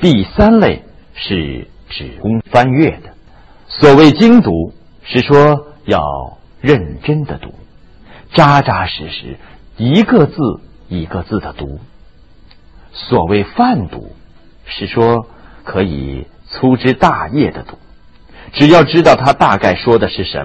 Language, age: Chinese, 50-69